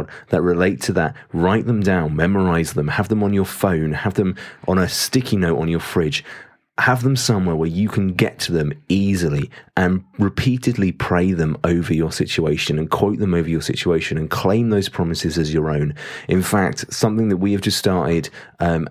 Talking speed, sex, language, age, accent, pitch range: 195 wpm, male, English, 30-49, British, 85-105 Hz